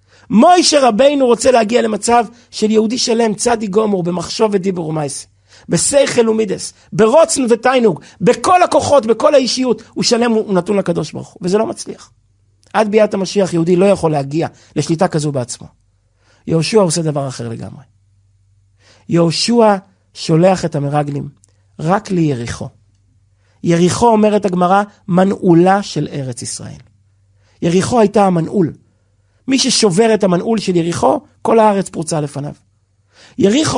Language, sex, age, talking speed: Hebrew, male, 50-69, 130 wpm